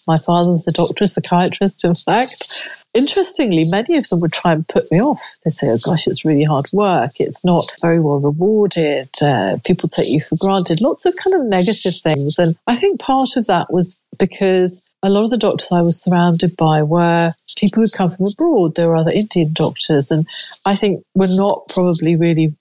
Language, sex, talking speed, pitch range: English, female, 205 wpm, 160-200 Hz